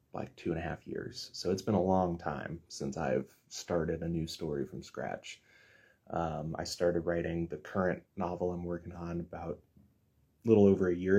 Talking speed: 195 wpm